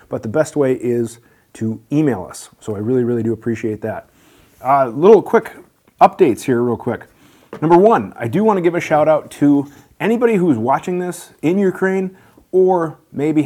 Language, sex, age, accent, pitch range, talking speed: English, male, 30-49, American, 115-145 Hz, 180 wpm